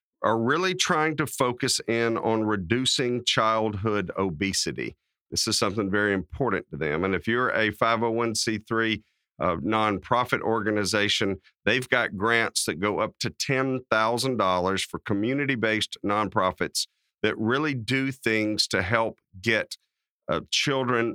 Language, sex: English, male